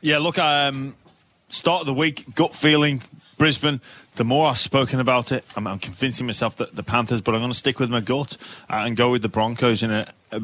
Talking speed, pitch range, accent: 225 wpm, 110-135 Hz, British